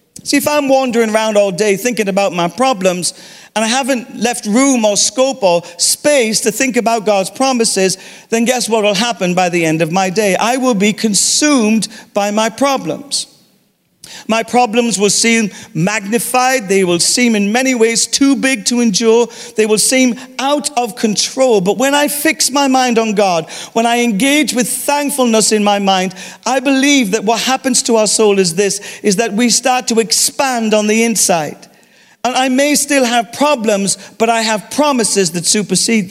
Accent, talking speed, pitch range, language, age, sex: British, 185 wpm, 200-250 Hz, English, 50-69, male